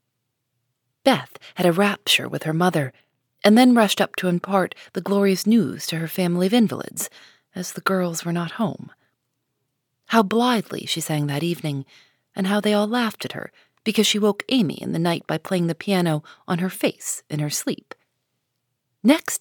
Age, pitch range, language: 30-49, 150-210 Hz, English